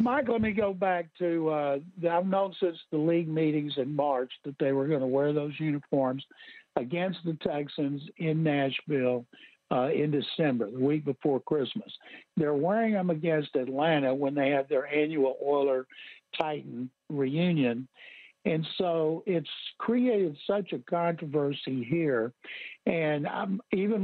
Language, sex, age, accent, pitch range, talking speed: English, male, 60-79, American, 140-185 Hz, 140 wpm